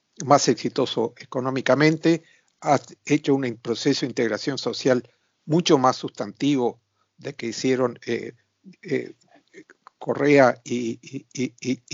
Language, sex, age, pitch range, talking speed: Spanish, male, 50-69, 125-150 Hz, 110 wpm